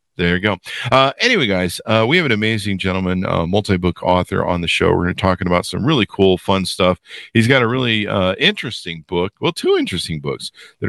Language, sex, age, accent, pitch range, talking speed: English, male, 50-69, American, 85-105 Hz, 225 wpm